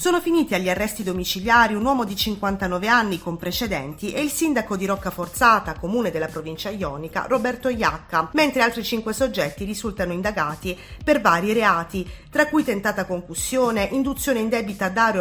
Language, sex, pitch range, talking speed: Italian, female, 180-245 Hz, 160 wpm